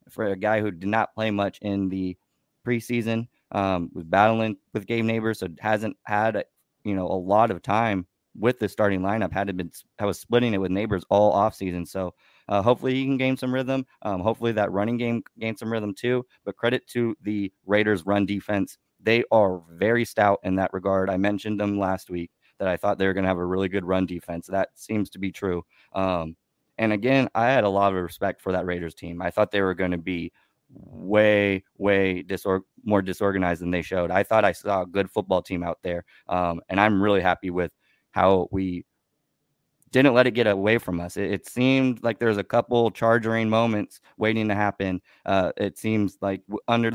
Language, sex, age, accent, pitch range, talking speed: English, male, 20-39, American, 95-110 Hz, 210 wpm